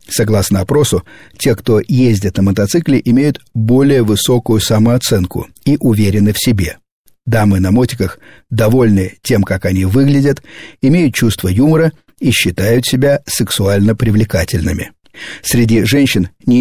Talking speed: 125 wpm